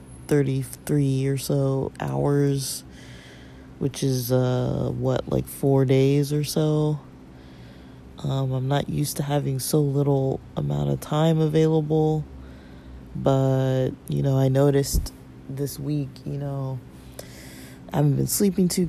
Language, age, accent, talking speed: English, 20-39, American, 125 wpm